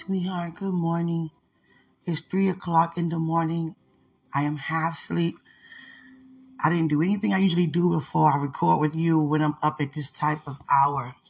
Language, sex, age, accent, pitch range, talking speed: English, female, 20-39, American, 150-205 Hz, 175 wpm